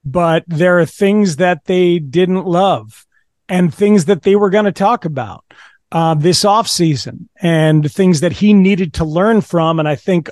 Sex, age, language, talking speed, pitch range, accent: male, 40-59, English, 185 wpm, 155-190 Hz, American